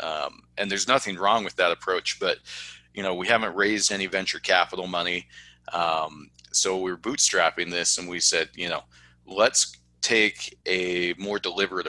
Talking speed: 170 wpm